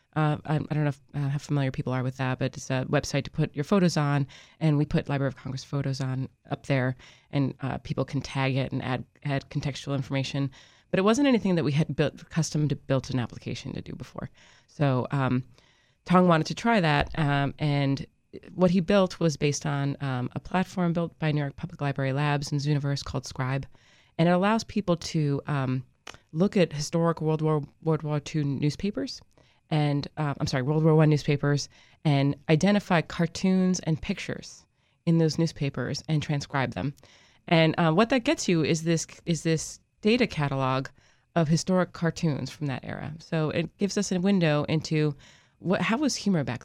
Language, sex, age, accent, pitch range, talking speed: English, female, 30-49, American, 135-165 Hz, 195 wpm